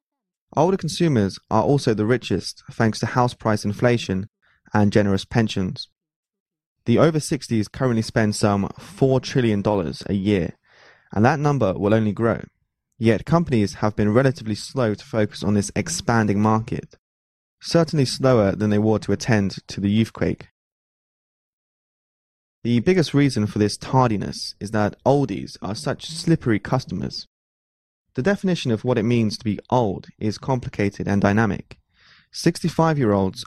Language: Chinese